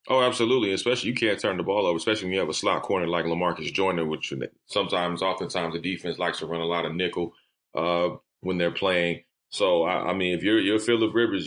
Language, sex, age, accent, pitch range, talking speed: English, male, 30-49, American, 90-105 Hz, 230 wpm